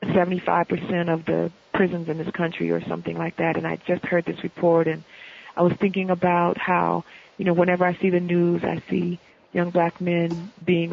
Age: 40-59